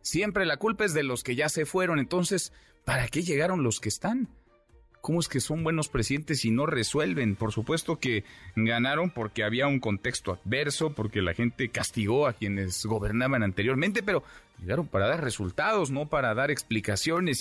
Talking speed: 180 wpm